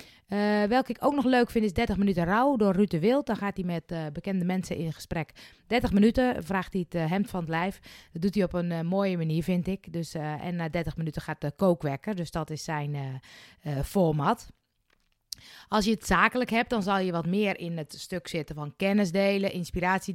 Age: 20-39